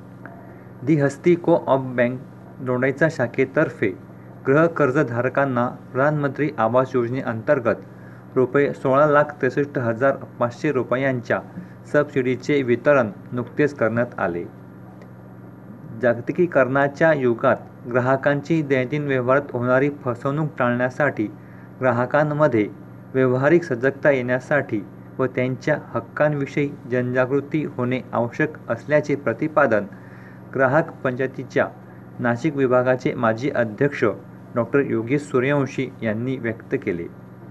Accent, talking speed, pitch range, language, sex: native, 85 wpm, 115-140 Hz, Marathi, male